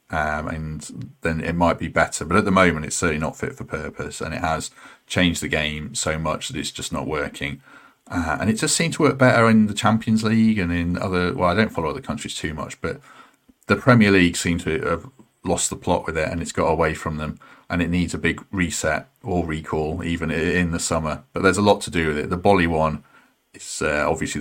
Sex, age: male, 40-59